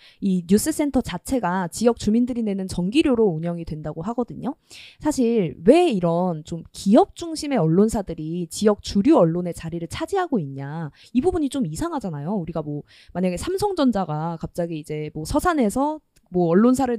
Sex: female